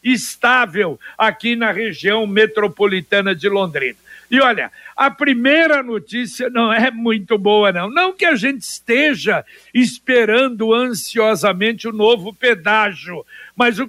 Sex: male